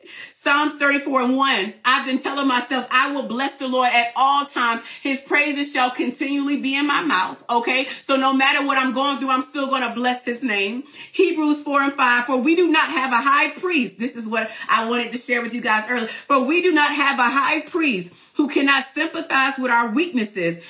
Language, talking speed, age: English, 220 wpm, 40-59